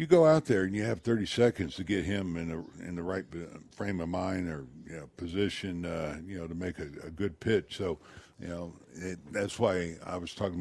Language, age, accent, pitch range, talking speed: English, 60-79, American, 85-110 Hz, 240 wpm